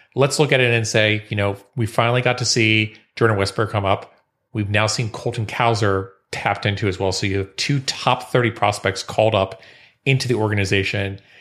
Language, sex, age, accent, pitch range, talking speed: English, male, 30-49, American, 100-120 Hz, 200 wpm